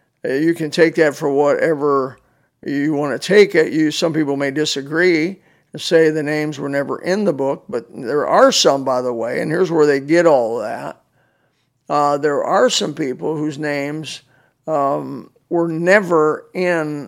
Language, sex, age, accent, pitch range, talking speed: English, male, 50-69, American, 150-180 Hz, 175 wpm